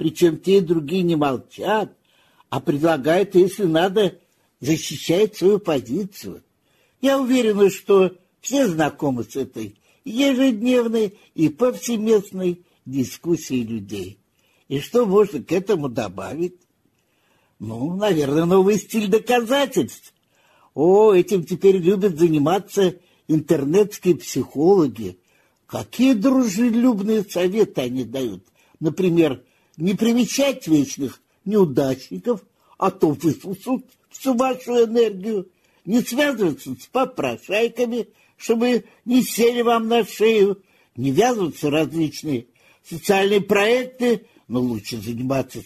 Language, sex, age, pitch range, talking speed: Russian, male, 50-69, 155-225 Hz, 100 wpm